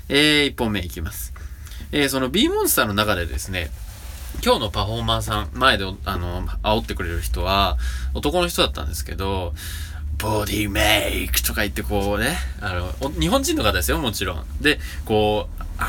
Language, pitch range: Japanese, 75-110 Hz